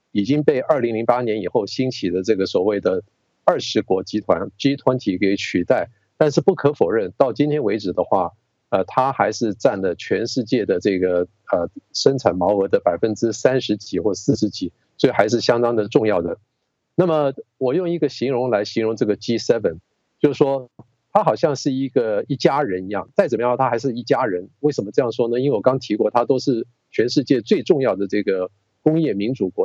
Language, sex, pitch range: English, male, 110-150 Hz